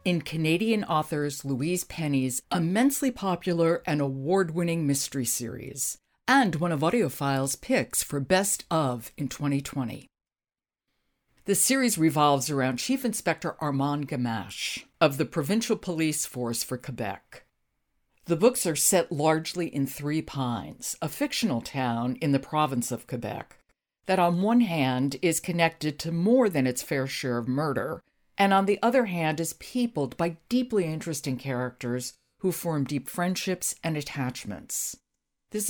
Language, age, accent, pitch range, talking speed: English, 60-79, American, 135-185 Hz, 140 wpm